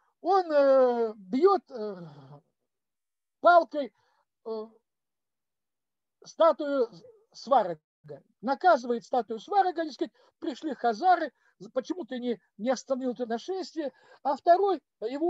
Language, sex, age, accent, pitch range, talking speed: Russian, male, 50-69, native, 265-370 Hz, 85 wpm